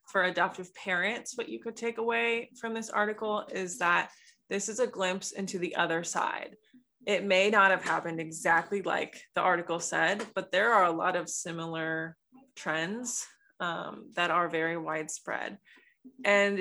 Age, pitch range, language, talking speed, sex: 20-39, 175-225 Hz, English, 165 wpm, female